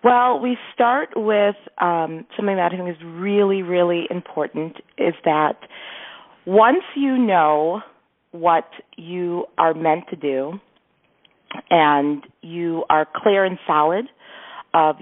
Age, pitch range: 40-59, 165-220 Hz